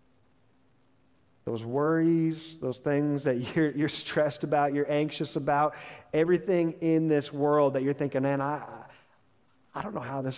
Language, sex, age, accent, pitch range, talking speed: English, male, 40-59, American, 125-160 Hz, 150 wpm